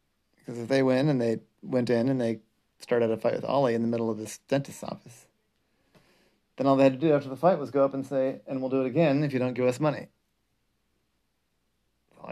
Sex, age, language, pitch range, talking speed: male, 30-49, English, 115-135 Hz, 235 wpm